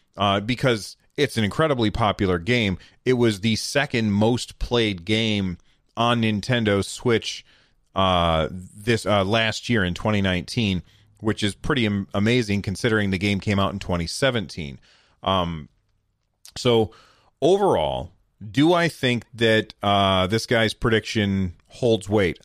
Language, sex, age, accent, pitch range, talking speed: English, male, 30-49, American, 95-120 Hz, 130 wpm